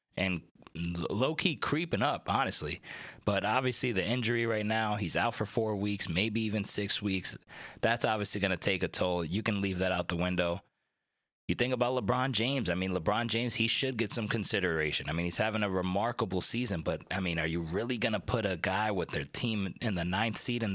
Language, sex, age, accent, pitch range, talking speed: English, male, 30-49, American, 95-125 Hz, 215 wpm